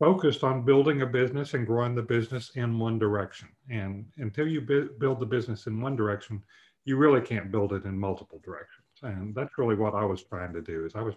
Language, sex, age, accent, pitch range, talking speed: English, male, 50-69, American, 100-120 Hz, 225 wpm